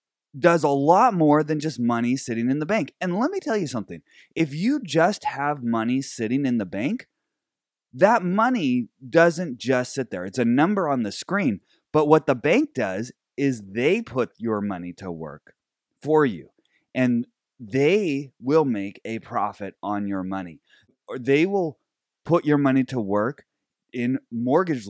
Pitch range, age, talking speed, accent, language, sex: 110-170 Hz, 30-49, 170 wpm, American, English, male